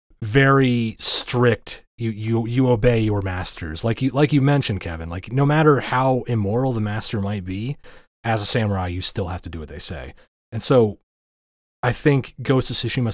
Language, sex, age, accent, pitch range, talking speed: English, male, 30-49, American, 85-120 Hz, 185 wpm